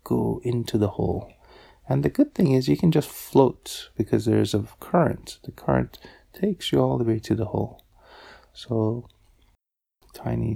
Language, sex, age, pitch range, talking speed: English, male, 30-49, 90-125 Hz, 165 wpm